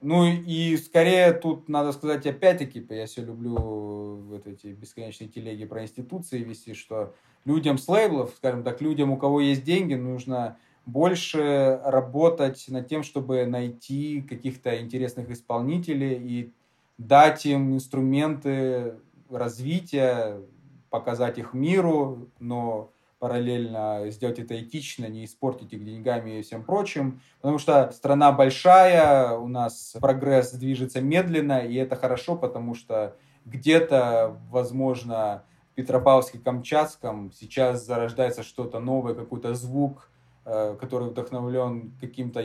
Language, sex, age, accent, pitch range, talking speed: Russian, male, 20-39, native, 115-140 Hz, 120 wpm